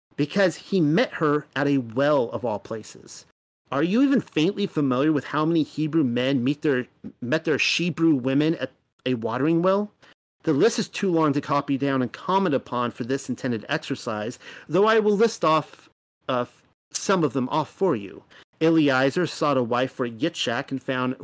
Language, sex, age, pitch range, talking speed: English, male, 40-59, 125-165 Hz, 185 wpm